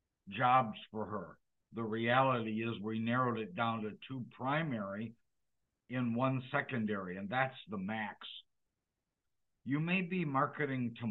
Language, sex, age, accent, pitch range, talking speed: English, male, 60-79, American, 115-140 Hz, 135 wpm